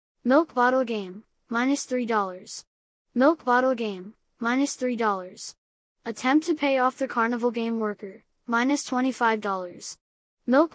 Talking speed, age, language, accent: 100 wpm, 20-39, English, American